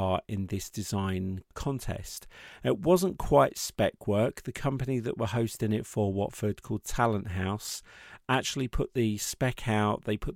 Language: English